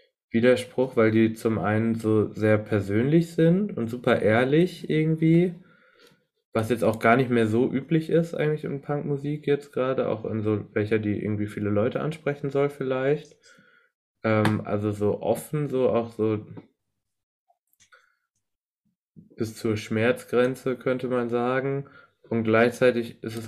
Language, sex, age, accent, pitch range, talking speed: German, male, 20-39, German, 110-145 Hz, 140 wpm